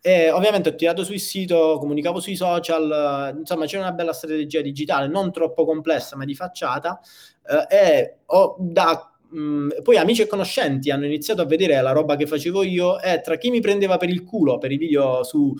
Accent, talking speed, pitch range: native, 190 wpm, 145-180 Hz